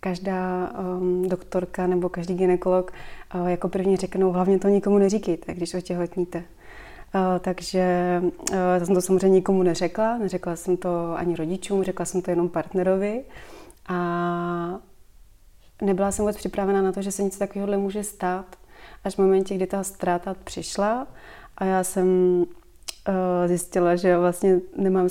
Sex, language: female, Czech